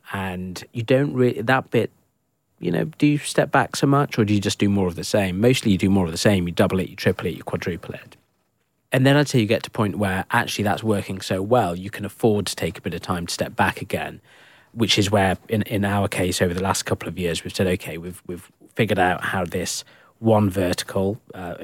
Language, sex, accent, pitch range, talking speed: English, male, British, 95-115 Hz, 250 wpm